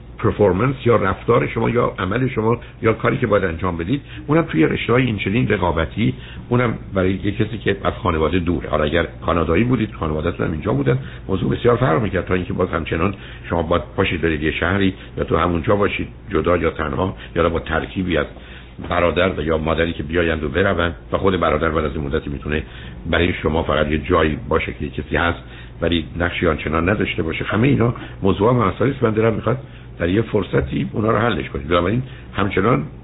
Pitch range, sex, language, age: 85-120 Hz, male, Persian, 60-79